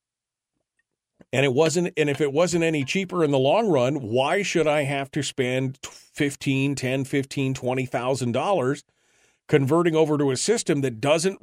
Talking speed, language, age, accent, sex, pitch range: 170 wpm, English, 40-59, American, male, 110-145 Hz